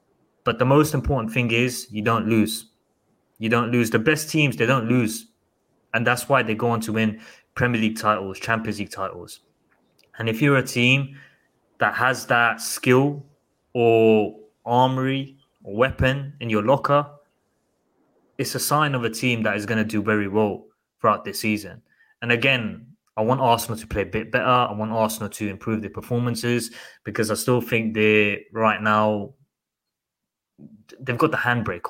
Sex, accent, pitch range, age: male, British, 105-125 Hz, 20-39